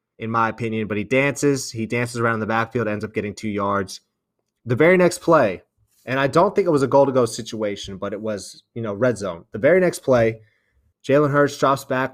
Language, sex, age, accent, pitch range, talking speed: English, male, 20-39, American, 110-135 Hz, 215 wpm